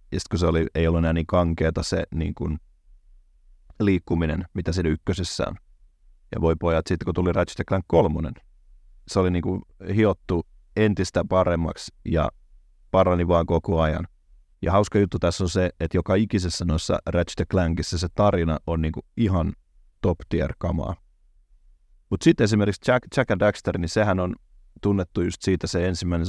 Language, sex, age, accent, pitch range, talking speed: Finnish, male, 30-49, native, 80-100 Hz, 165 wpm